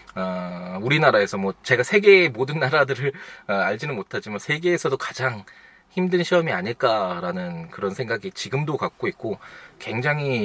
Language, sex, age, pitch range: Korean, male, 20-39, 105-165 Hz